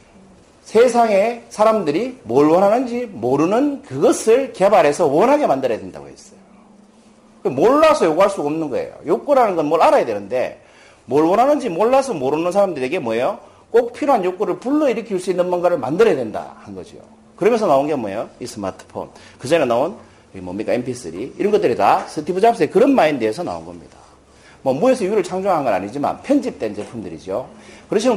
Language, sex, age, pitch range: Korean, male, 40-59, 160-255 Hz